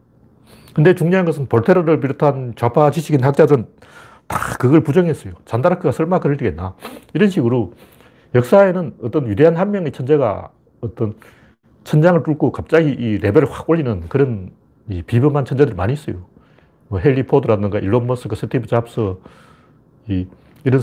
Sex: male